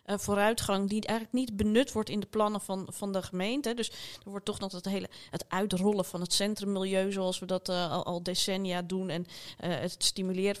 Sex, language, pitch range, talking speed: female, Dutch, 180-200 Hz, 210 wpm